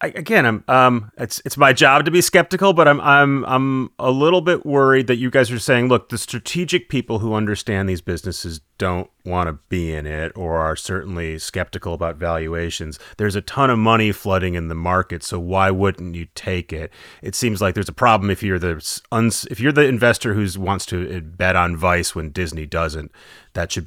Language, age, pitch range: English, 30-49, 85-115 Hz